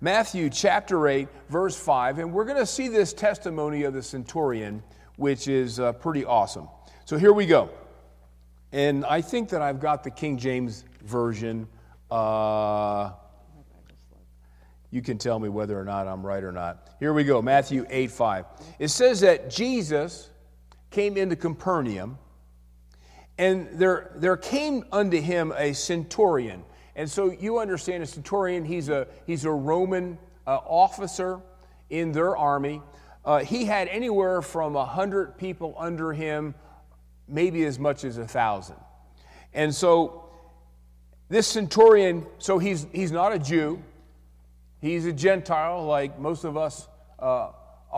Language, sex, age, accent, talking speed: English, male, 50-69, American, 145 wpm